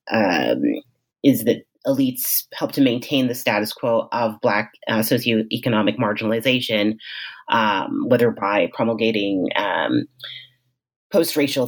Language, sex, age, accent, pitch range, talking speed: English, female, 30-49, American, 110-155 Hz, 115 wpm